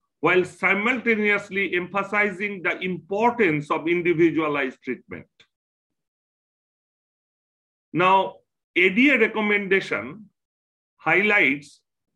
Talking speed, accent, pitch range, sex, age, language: 60 wpm, Indian, 160-205 Hz, male, 50-69, English